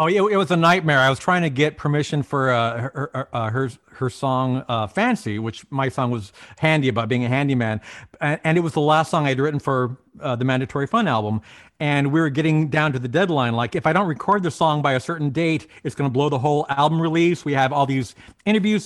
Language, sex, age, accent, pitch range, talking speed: English, male, 40-59, American, 140-180 Hz, 250 wpm